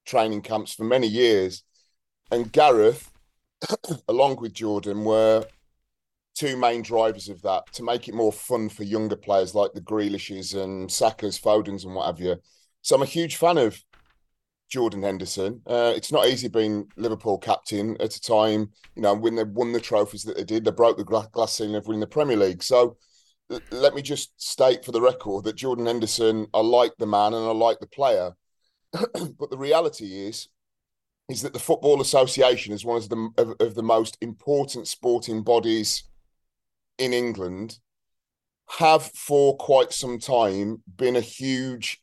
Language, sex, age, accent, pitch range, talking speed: English, male, 30-49, British, 105-125 Hz, 175 wpm